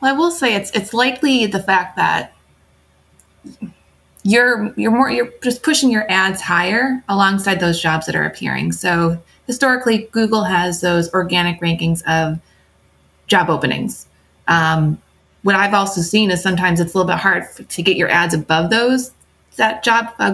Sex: female